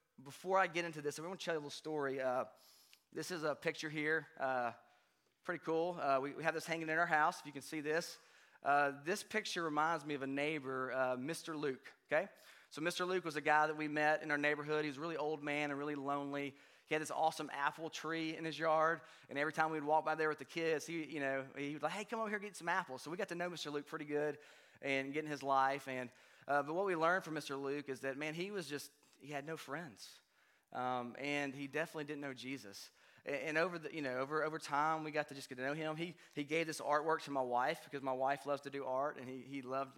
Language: English